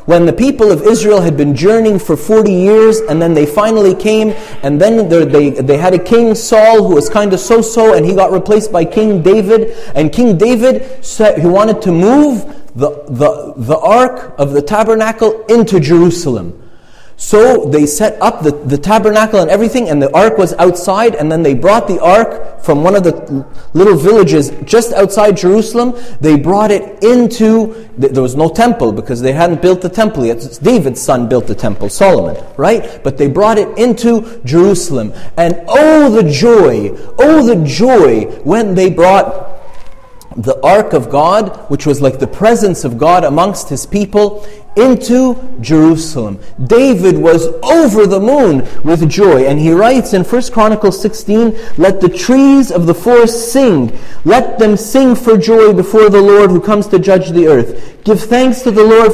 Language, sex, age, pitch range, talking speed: English, male, 30-49, 165-225 Hz, 180 wpm